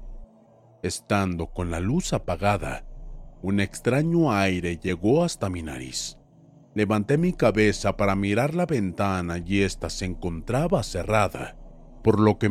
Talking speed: 130 wpm